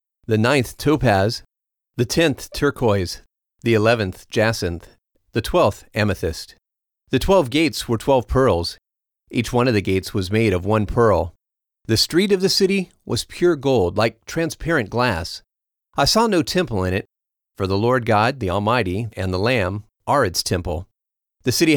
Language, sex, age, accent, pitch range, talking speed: English, male, 40-59, American, 100-130 Hz, 165 wpm